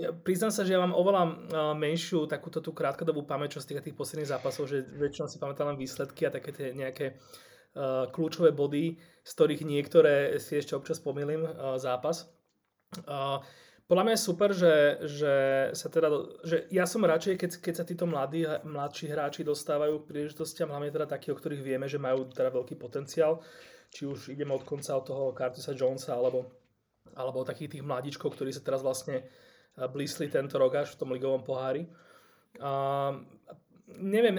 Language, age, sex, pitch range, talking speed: Slovak, 30-49, male, 135-165 Hz, 180 wpm